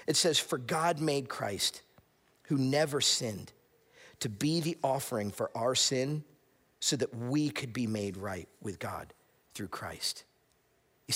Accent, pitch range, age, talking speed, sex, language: American, 135-195 Hz, 40-59, 150 wpm, male, English